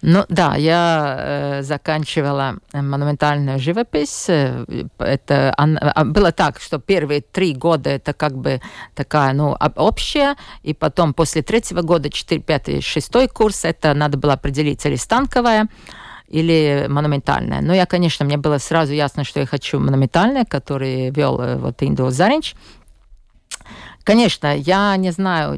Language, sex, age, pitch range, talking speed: Russian, female, 50-69, 140-180 Hz, 135 wpm